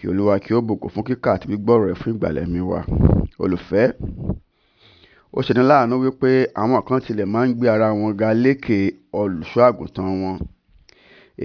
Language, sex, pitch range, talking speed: English, male, 105-130 Hz, 180 wpm